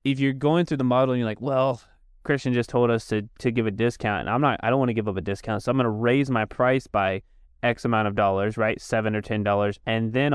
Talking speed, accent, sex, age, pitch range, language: 280 wpm, American, male, 20-39, 105-125 Hz, English